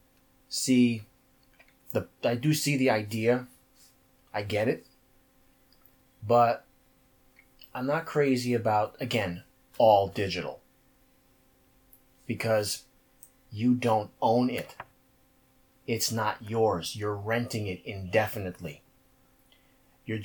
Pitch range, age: 105-130 Hz, 30-49